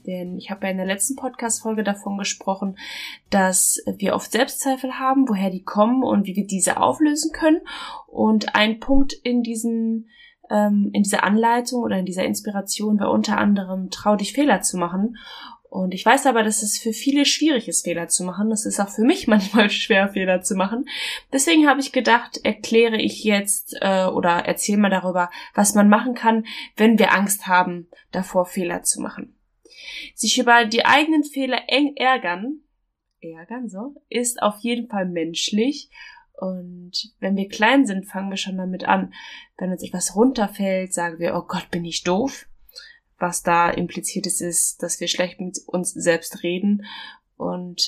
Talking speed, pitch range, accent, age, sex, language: 175 wpm, 185-240 Hz, German, 10-29, female, German